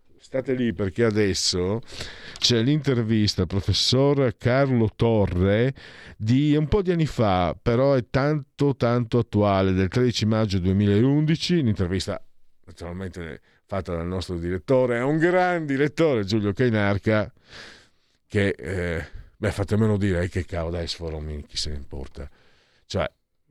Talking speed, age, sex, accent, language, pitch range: 135 wpm, 50-69, male, native, Italian, 85-110 Hz